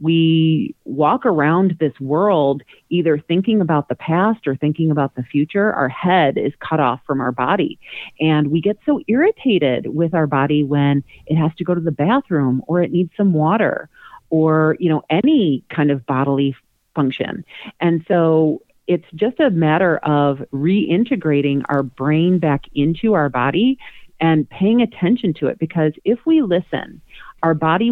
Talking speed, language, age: 165 wpm, English, 40-59